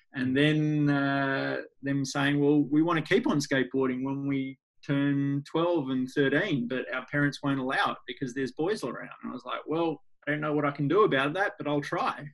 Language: English